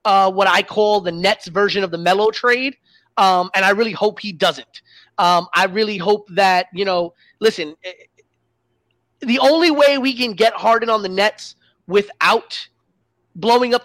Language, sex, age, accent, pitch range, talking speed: English, male, 30-49, American, 180-225 Hz, 170 wpm